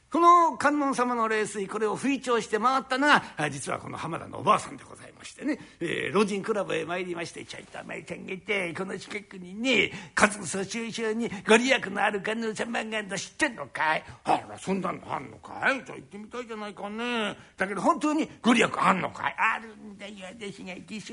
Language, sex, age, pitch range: Japanese, male, 60-79, 200-235 Hz